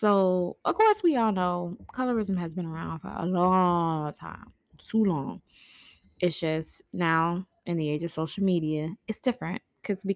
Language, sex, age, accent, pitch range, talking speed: English, female, 20-39, American, 175-220 Hz, 175 wpm